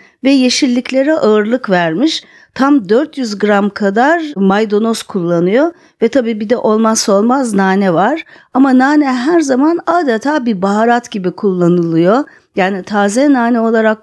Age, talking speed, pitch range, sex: 40-59, 135 wpm, 190-260 Hz, female